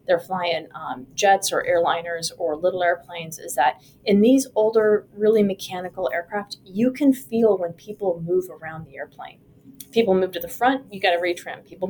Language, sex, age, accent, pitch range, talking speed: English, female, 30-49, American, 170-215 Hz, 180 wpm